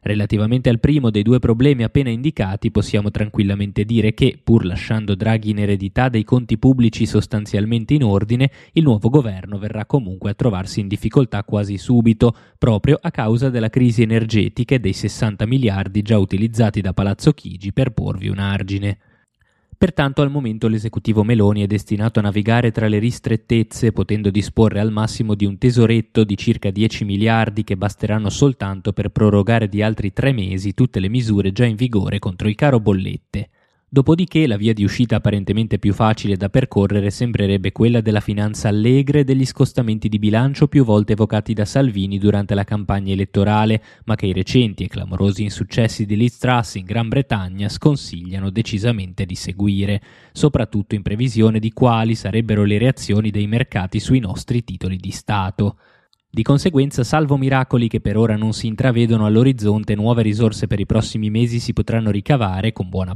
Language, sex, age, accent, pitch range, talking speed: Italian, male, 20-39, native, 100-120 Hz, 165 wpm